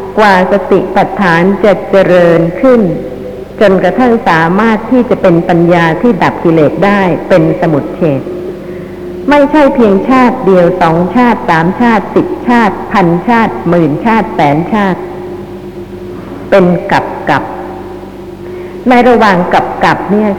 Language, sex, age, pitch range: Thai, female, 60-79, 170-225 Hz